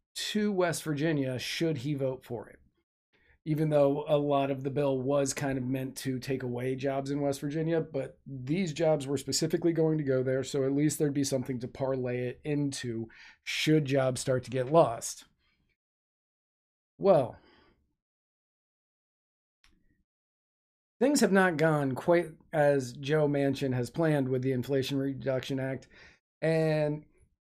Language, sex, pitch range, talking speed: English, male, 130-160 Hz, 150 wpm